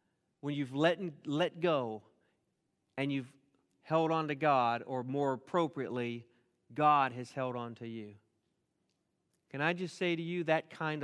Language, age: English, 40-59